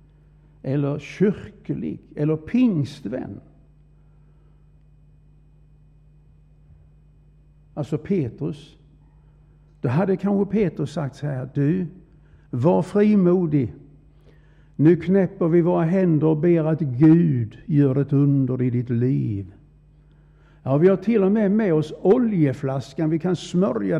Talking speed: 110 wpm